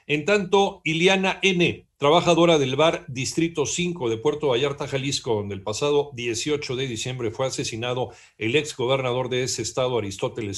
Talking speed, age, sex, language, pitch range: 160 wpm, 50-69, male, Spanish, 115-155 Hz